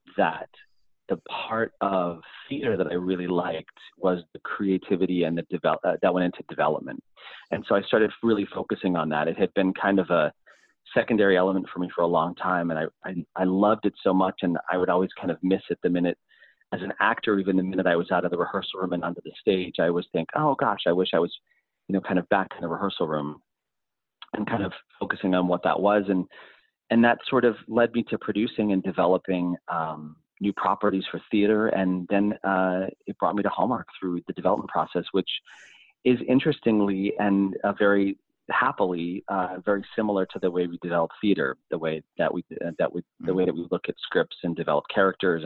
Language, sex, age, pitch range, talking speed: English, male, 30-49, 90-105 Hz, 215 wpm